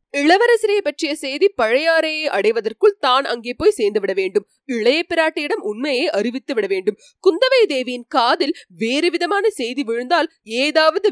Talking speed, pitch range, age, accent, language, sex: 105 wpm, 265-435 Hz, 20-39, native, Tamil, female